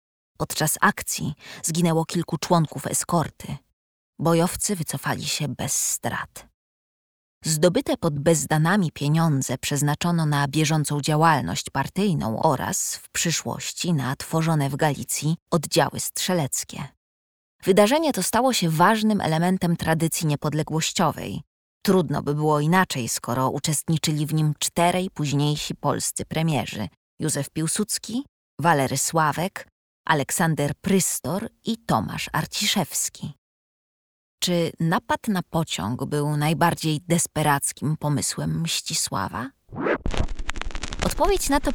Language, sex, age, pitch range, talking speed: Polish, female, 20-39, 140-175 Hz, 100 wpm